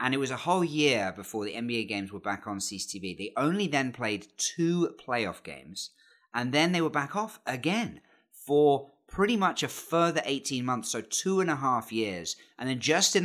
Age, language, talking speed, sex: 30-49, English, 205 wpm, male